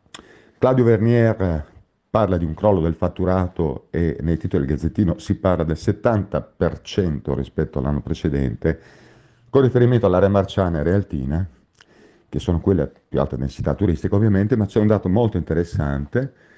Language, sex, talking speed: Italian, male, 150 wpm